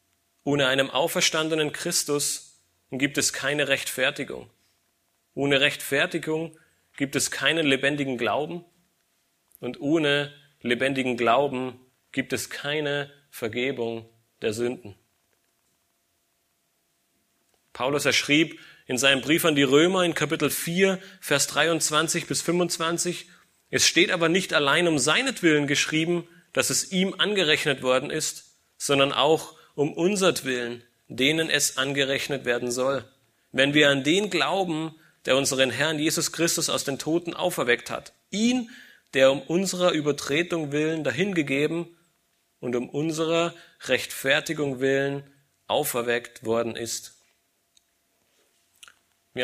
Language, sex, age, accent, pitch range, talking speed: German, male, 30-49, German, 130-165 Hz, 115 wpm